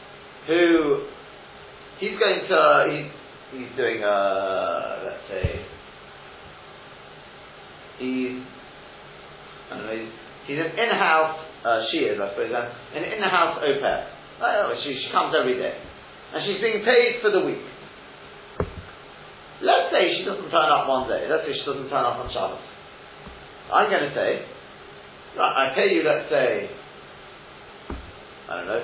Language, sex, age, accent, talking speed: English, male, 40-59, British, 150 wpm